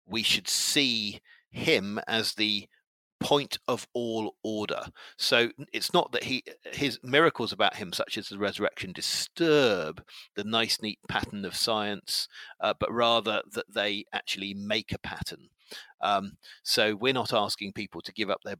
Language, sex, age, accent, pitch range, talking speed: English, male, 50-69, British, 105-155 Hz, 155 wpm